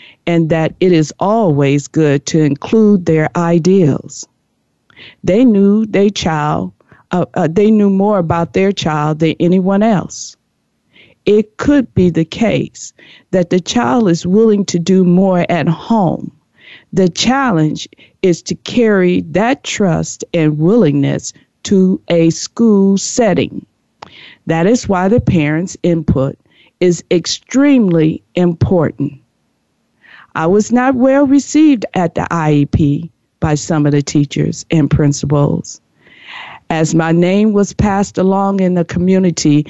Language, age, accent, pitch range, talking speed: English, 50-69, American, 155-195 Hz, 130 wpm